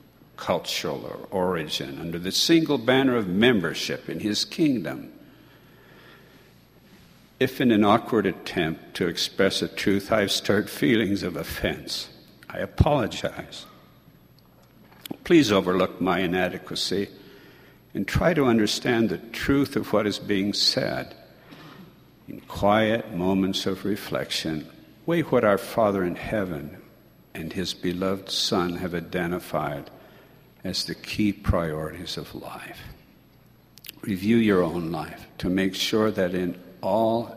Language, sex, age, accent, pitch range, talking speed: English, male, 60-79, American, 90-110 Hz, 125 wpm